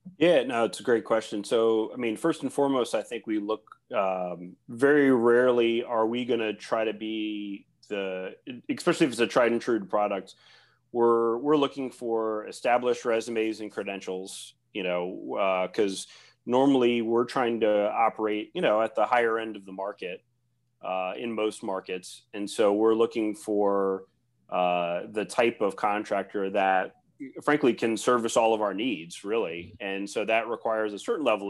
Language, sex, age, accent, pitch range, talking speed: English, male, 30-49, American, 95-120 Hz, 175 wpm